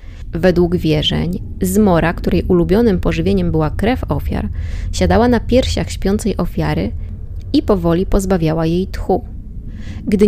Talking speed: 115 wpm